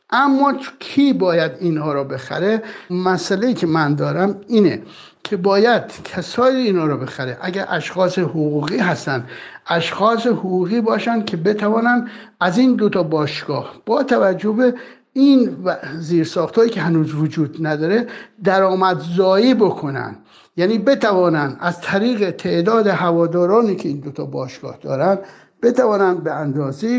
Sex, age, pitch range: male, 60-79, 160-210 Hz